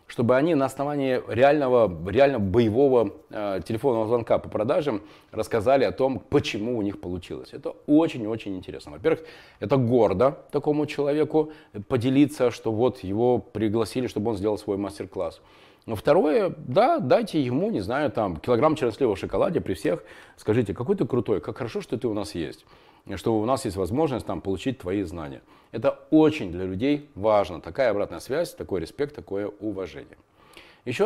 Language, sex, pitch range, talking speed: Russian, male, 100-145 Hz, 155 wpm